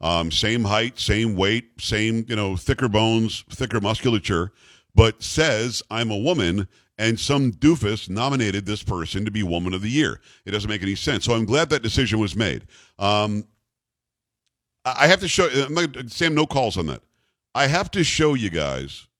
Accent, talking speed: American, 185 wpm